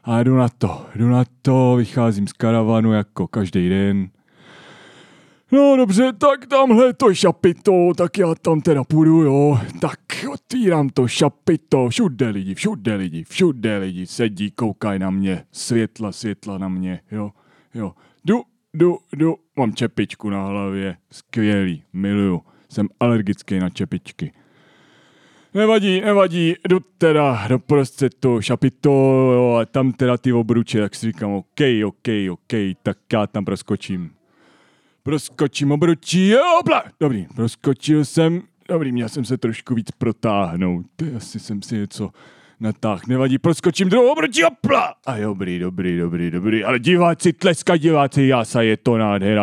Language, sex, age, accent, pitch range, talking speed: Czech, male, 30-49, native, 105-170 Hz, 150 wpm